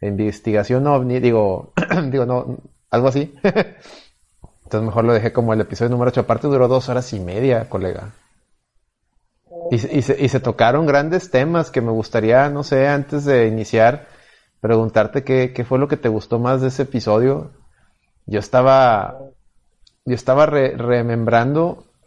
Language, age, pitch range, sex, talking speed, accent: Spanish, 30-49, 115-140 Hz, male, 145 wpm, Mexican